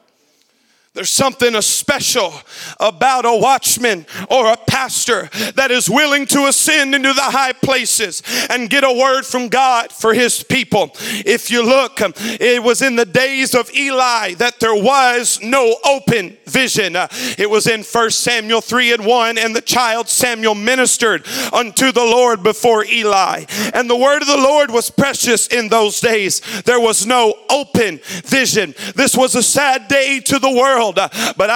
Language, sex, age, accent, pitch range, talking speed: English, male, 40-59, American, 230-270 Hz, 165 wpm